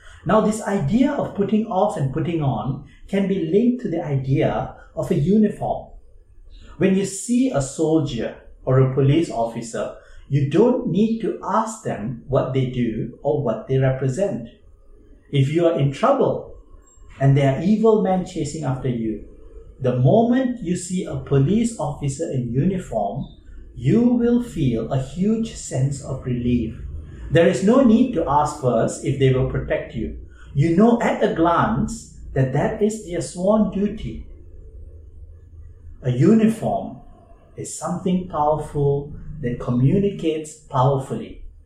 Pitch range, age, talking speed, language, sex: 120-195 Hz, 60-79, 145 wpm, English, male